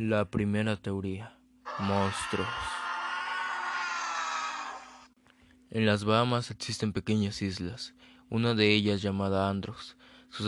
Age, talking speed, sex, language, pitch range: 20-39, 90 wpm, male, Spanish, 100-115 Hz